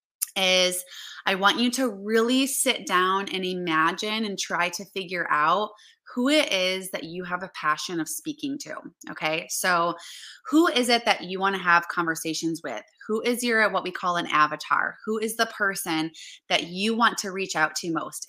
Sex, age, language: female, 20-39, English